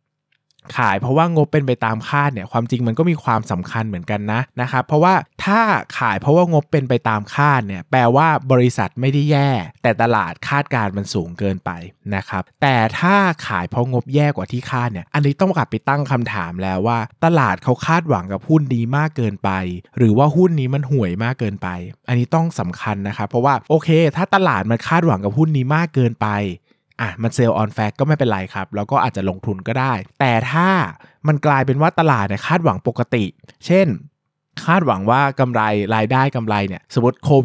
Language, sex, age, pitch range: Thai, male, 20-39, 105-145 Hz